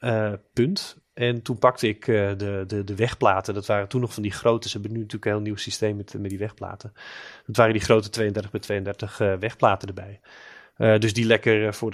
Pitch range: 105-120 Hz